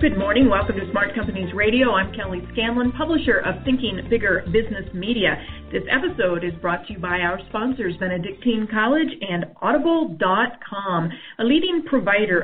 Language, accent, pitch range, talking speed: English, American, 175-245 Hz, 155 wpm